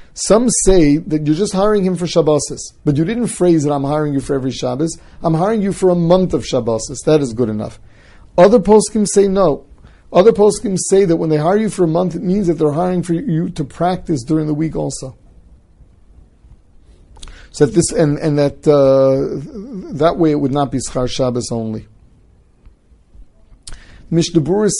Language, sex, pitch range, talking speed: English, male, 120-165 Hz, 185 wpm